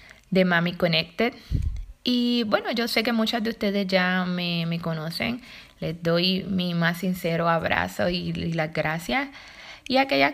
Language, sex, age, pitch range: Spanish, female, 20-39, 180-230 Hz